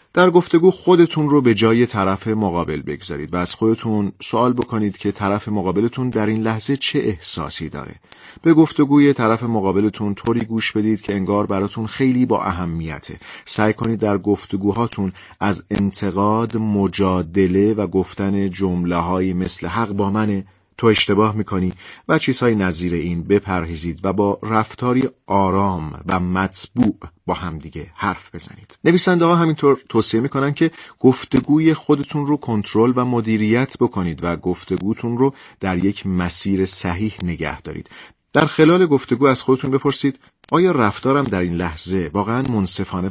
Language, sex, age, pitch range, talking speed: Persian, male, 40-59, 95-120 Hz, 145 wpm